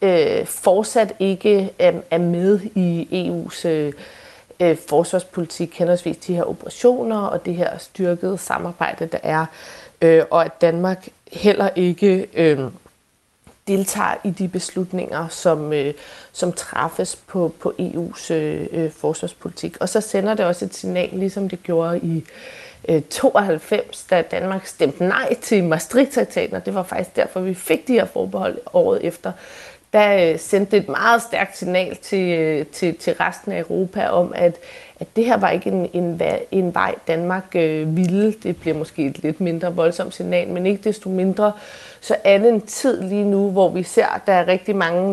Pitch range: 170-200 Hz